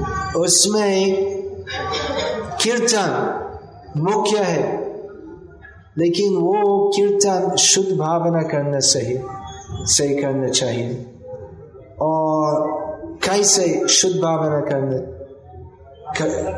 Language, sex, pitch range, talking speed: Hindi, male, 150-200 Hz, 70 wpm